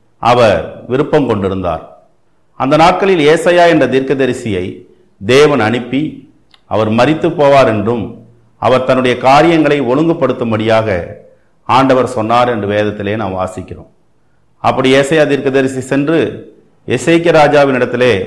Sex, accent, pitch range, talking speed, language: male, native, 115-150 Hz, 100 wpm, Tamil